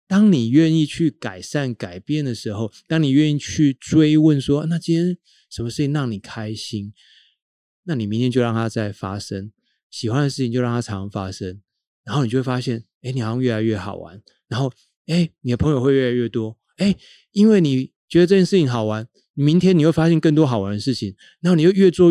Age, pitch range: 30-49, 110-150 Hz